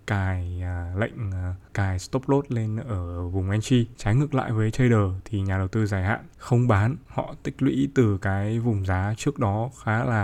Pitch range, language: 100-125 Hz, Vietnamese